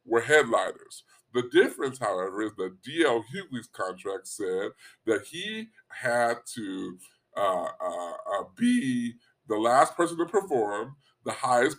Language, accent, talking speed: English, American, 130 wpm